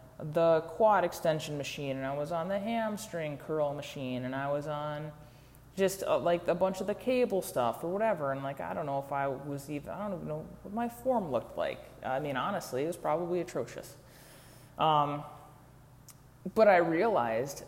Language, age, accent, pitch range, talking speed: English, 20-39, American, 140-170 Hz, 190 wpm